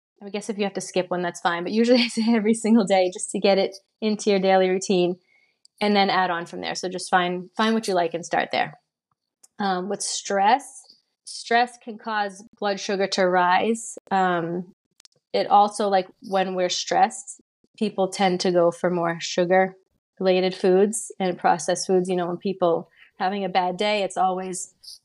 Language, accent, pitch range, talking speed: English, American, 180-210 Hz, 190 wpm